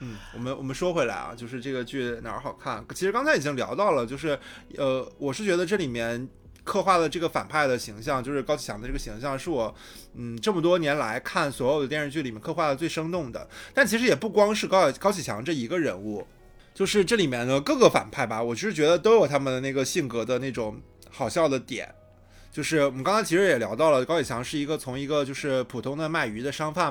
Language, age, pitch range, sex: Chinese, 20-39, 125-175 Hz, male